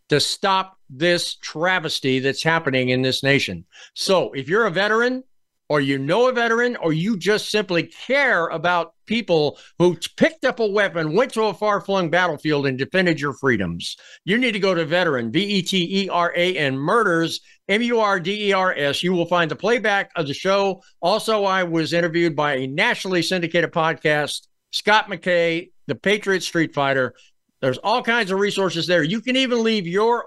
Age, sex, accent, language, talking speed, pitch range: 50-69, male, American, English, 165 wpm, 140-195 Hz